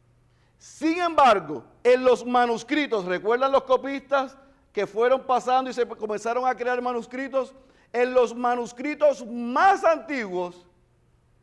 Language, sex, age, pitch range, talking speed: Spanish, male, 50-69, 220-275 Hz, 115 wpm